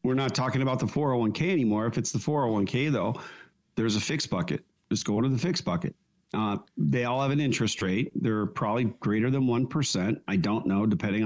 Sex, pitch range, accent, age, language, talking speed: male, 110-150 Hz, American, 50-69, English, 205 wpm